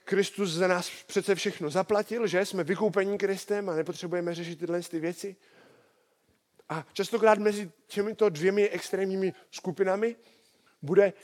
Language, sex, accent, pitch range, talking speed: Czech, male, native, 165-200 Hz, 125 wpm